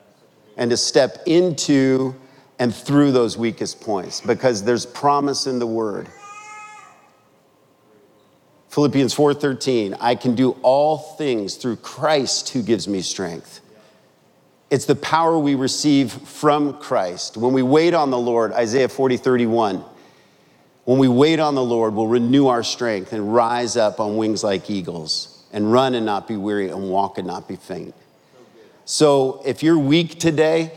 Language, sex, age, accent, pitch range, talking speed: English, male, 50-69, American, 110-145 Hz, 150 wpm